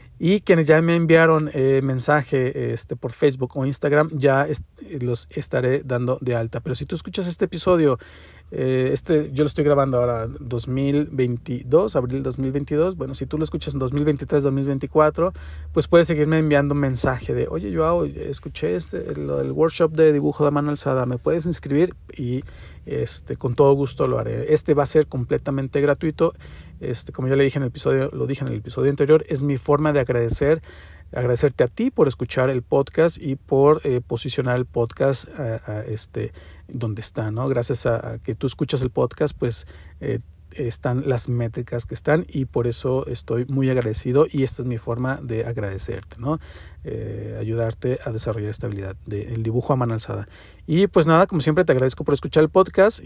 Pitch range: 120-150 Hz